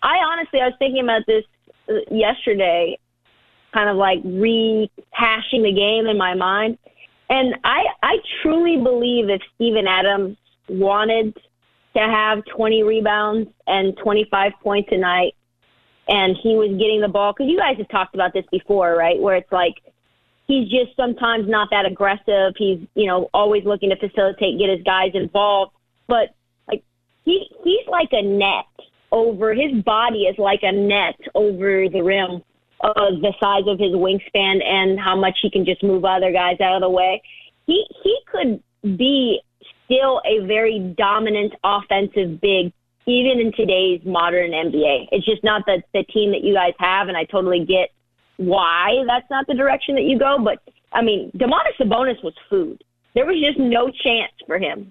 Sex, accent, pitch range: female, American, 190-240 Hz